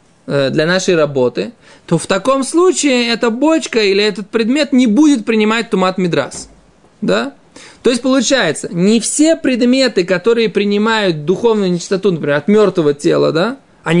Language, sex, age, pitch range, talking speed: Russian, male, 20-39, 175-230 Hz, 145 wpm